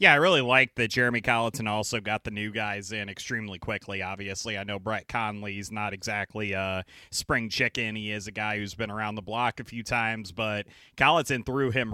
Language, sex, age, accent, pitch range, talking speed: English, male, 30-49, American, 110-130 Hz, 205 wpm